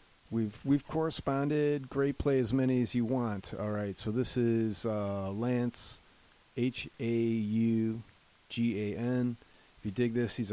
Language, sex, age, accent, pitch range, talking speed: English, male, 40-59, American, 95-120 Hz, 160 wpm